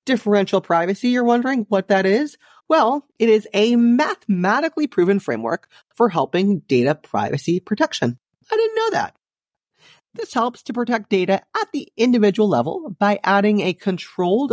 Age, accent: 30-49, American